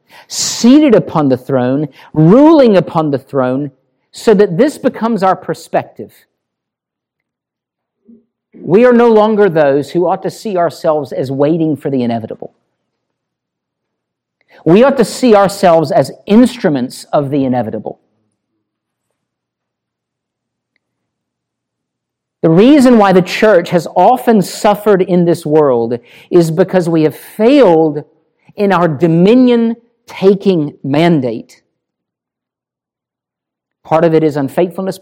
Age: 50-69